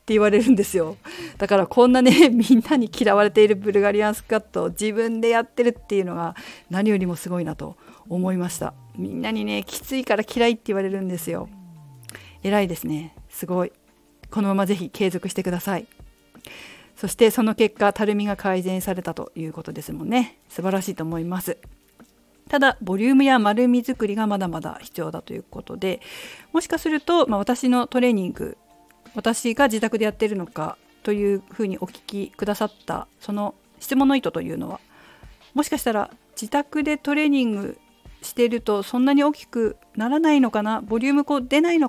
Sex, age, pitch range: female, 50-69, 185-240 Hz